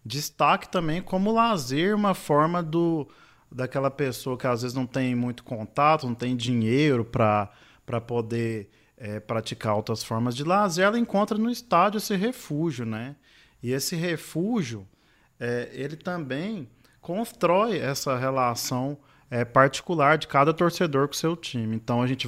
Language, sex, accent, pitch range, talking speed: Portuguese, male, Brazilian, 120-155 Hz, 135 wpm